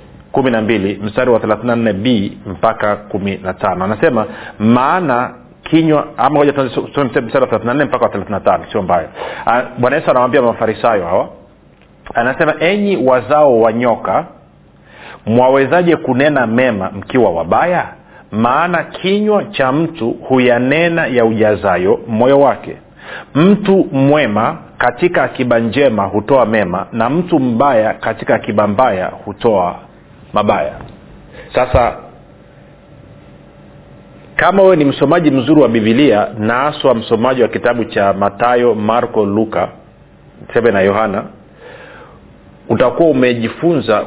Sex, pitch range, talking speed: male, 110-145 Hz, 105 wpm